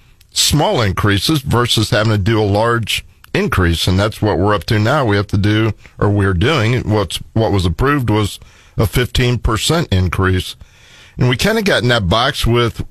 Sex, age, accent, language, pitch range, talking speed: male, 50-69, American, English, 100-120 Hz, 185 wpm